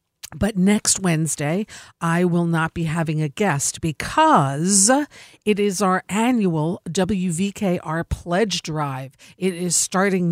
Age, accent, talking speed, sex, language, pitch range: 50-69, American, 120 wpm, female, English, 155-195 Hz